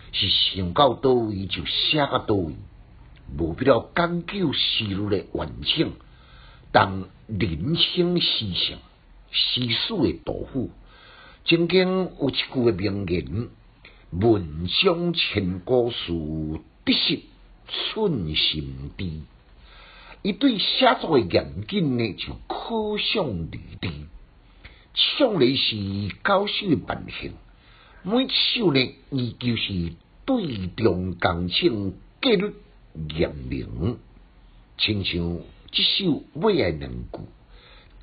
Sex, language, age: male, Chinese, 60-79